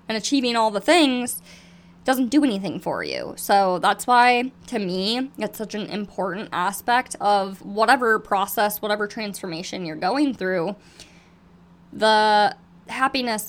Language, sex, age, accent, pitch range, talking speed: English, female, 20-39, American, 195-250 Hz, 135 wpm